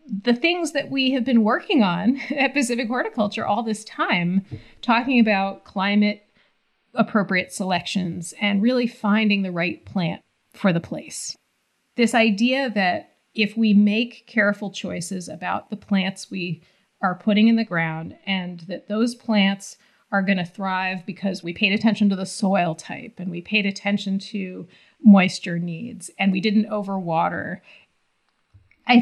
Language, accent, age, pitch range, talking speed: English, American, 30-49, 180-220 Hz, 150 wpm